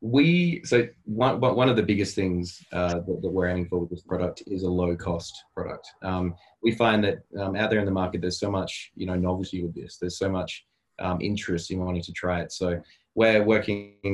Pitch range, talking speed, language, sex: 90-105 Hz, 225 wpm, English, male